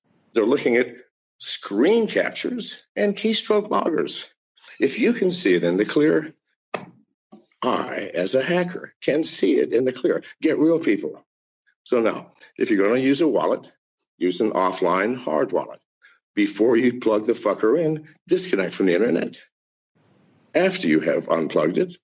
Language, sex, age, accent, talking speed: English, male, 60-79, American, 160 wpm